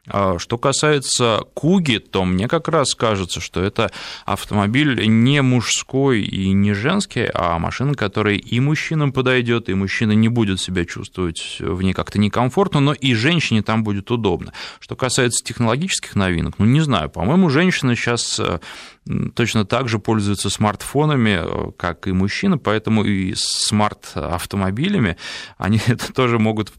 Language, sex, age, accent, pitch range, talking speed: Russian, male, 20-39, native, 100-125 Hz, 140 wpm